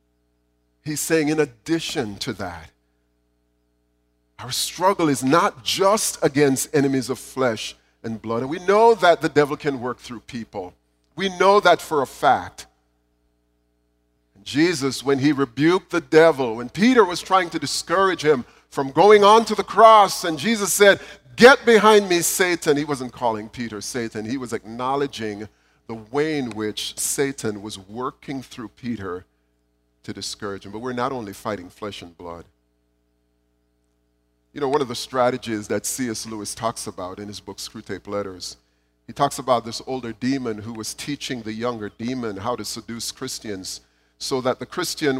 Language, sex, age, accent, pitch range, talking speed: English, male, 40-59, American, 100-160 Hz, 165 wpm